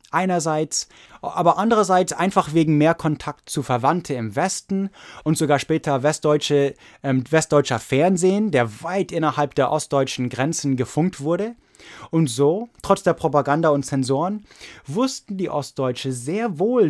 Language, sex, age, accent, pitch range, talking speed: English, male, 20-39, German, 140-190 Hz, 130 wpm